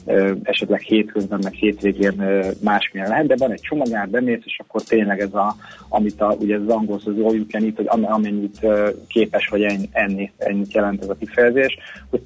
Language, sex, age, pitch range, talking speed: Hungarian, male, 30-49, 100-115 Hz, 185 wpm